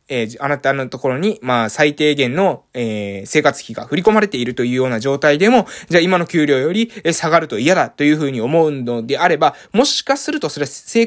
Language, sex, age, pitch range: Japanese, male, 20-39, 130-185 Hz